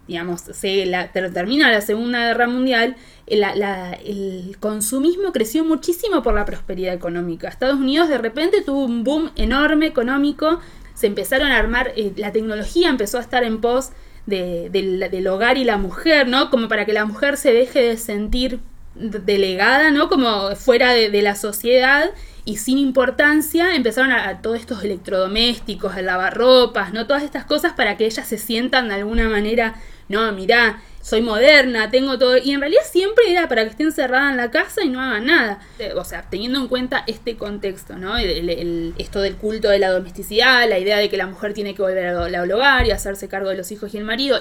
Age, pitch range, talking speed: 20-39, 200-265 Hz, 200 wpm